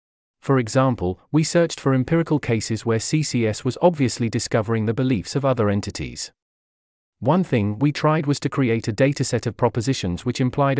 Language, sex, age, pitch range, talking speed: English, male, 30-49, 105-145 Hz, 165 wpm